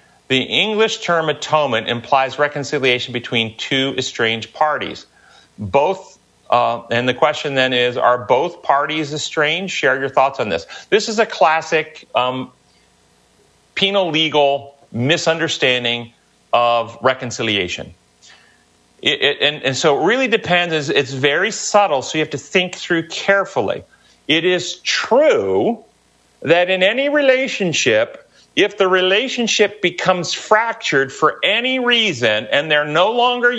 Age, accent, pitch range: 40-59, American, 135-190 Hz